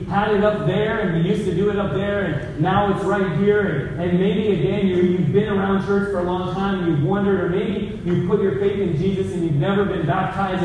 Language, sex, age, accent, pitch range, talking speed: English, male, 30-49, American, 155-195 Hz, 260 wpm